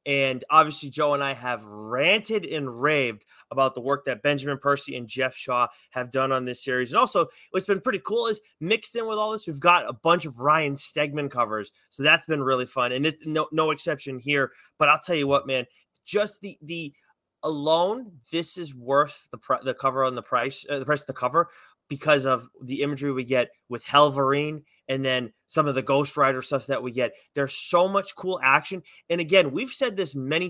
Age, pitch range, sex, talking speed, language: 30-49, 130-155 Hz, male, 210 wpm, English